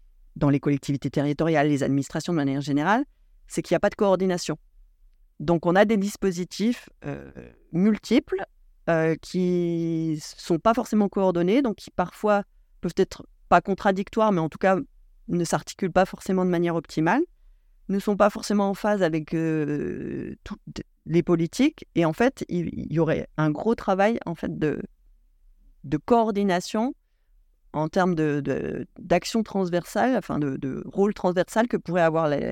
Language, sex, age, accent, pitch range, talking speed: French, female, 30-49, French, 160-210 Hz, 160 wpm